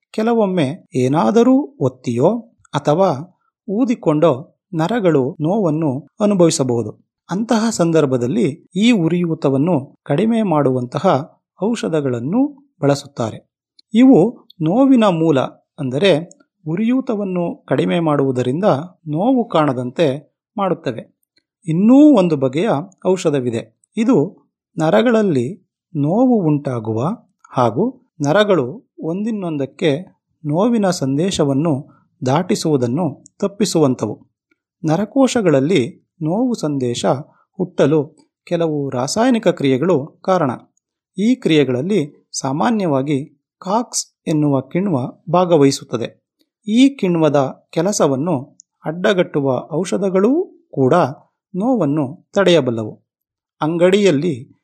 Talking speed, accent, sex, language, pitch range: 70 wpm, native, male, Kannada, 140-210 Hz